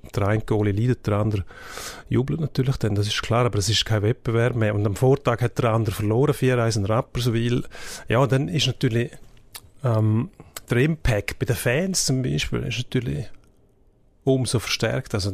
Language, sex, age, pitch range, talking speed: German, male, 30-49, 110-130 Hz, 175 wpm